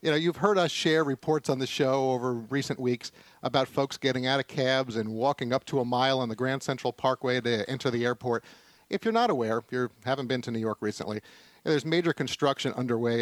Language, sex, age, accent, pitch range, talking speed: English, male, 40-59, American, 120-160 Hz, 225 wpm